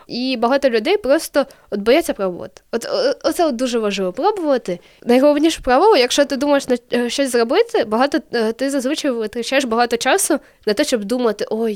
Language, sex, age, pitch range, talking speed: Ukrainian, female, 10-29, 235-305 Hz, 155 wpm